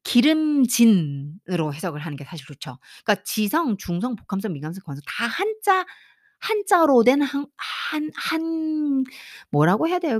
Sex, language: female, Korean